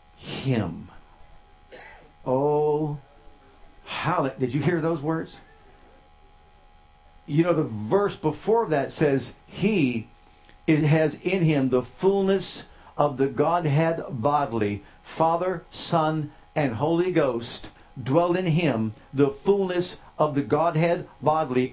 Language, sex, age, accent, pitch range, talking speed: English, male, 60-79, American, 145-195 Hz, 110 wpm